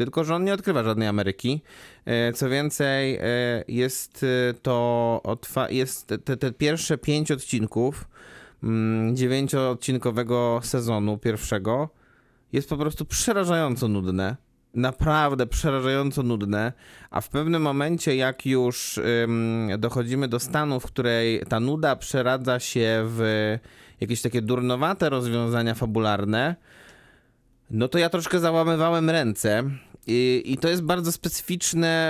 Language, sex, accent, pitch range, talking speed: Polish, male, native, 110-140 Hz, 115 wpm